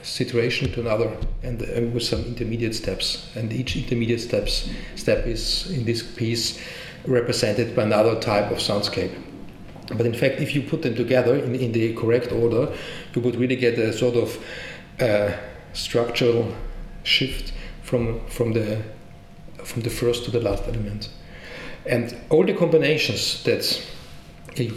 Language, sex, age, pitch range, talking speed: English, male, 40-59, 115-125 Hz, 155 wpm